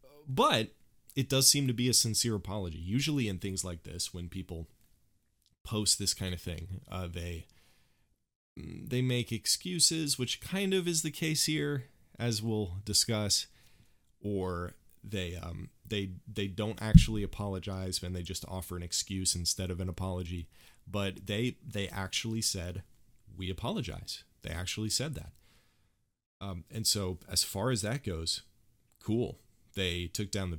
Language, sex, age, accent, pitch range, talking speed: English, male, 30-49, American, 90-110 Hz, 155 wpm